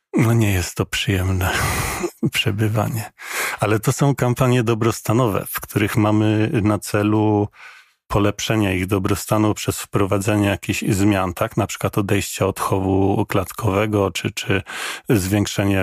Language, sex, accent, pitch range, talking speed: Polish, male, native, 95-110 Hz, 125 wpm